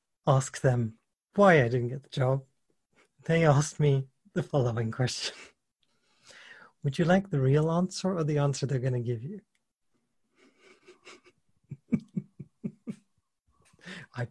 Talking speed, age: 120 wpm, 30-49